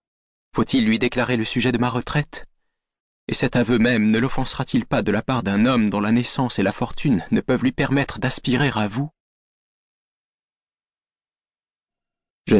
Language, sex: French, male